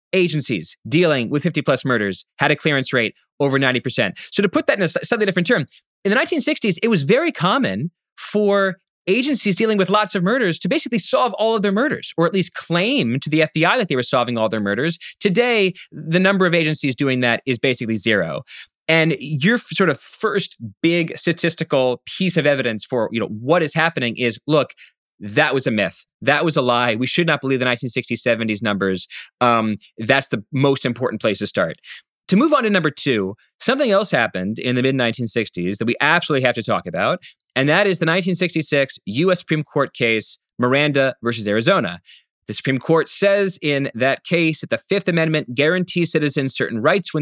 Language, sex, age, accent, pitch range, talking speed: English, male, 20-39, American, 130-190 Hz, 195 wpm